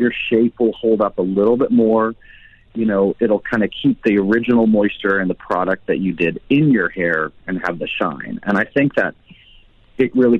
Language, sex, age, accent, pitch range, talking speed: English, male, 40-59, American, 90-115 Hz, 210 wpm